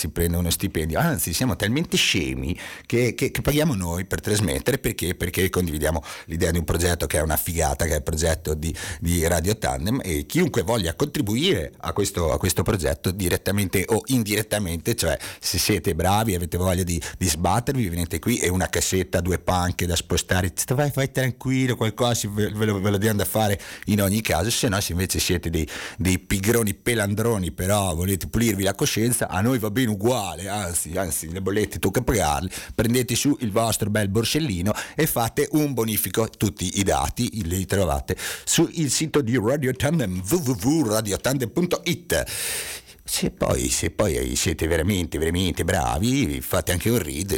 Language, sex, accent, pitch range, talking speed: Italian, male, native, 85-115 Hz, 170 wpm